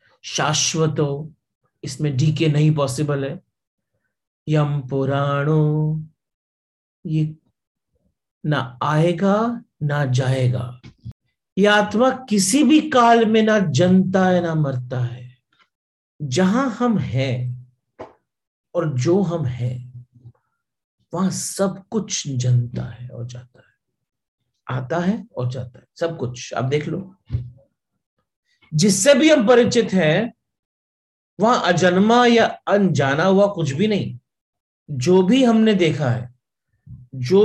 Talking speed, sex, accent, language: 110 wpm, male, native, Hindi